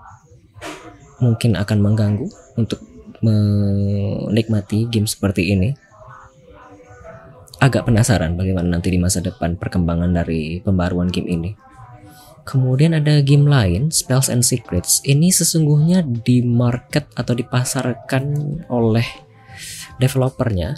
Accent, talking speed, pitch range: native, 100 wpm, 110-140 Hz